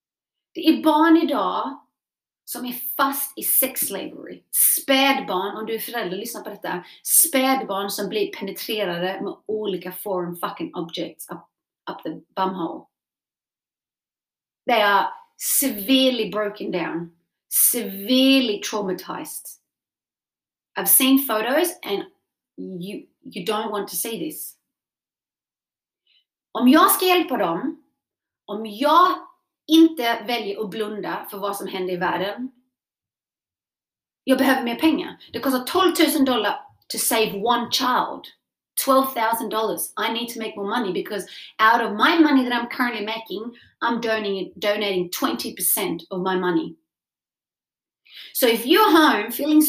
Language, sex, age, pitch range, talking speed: English, female, 30-49, 205-300 Hz, 125 wpm